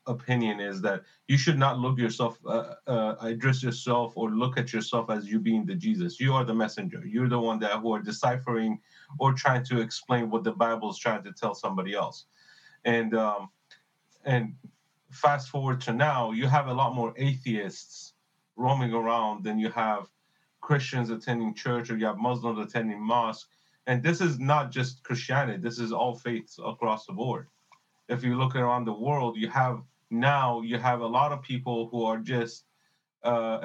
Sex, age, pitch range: male, 30-49, 115-140 Hz